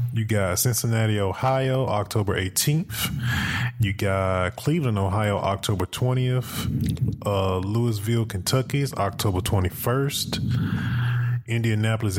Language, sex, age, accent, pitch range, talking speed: English, male, 20-39, American, 100-120 Hz, 90 wpm